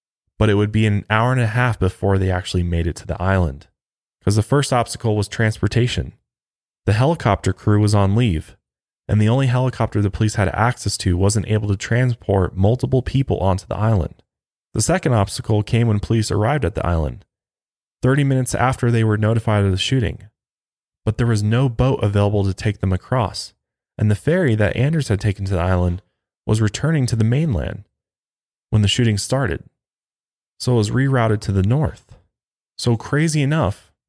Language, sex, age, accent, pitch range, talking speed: English, male, 20-39, American, 100-125 Hz, 185 wpm